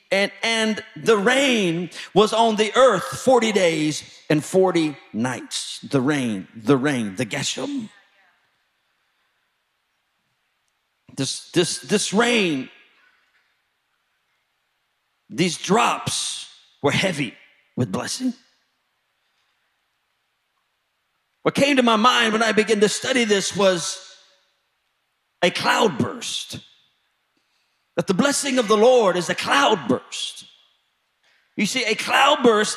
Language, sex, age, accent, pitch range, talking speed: English, male, 50-69, American, 195-260 Hz, 105 wpm